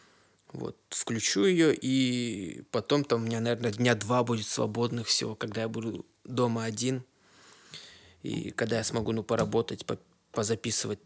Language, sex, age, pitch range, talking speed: Russian, male, 20-39, 115-135 Hz, 140 wpm